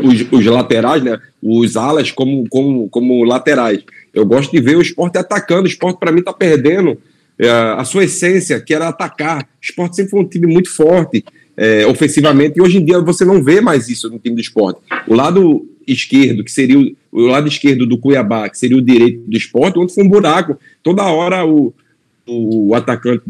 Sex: male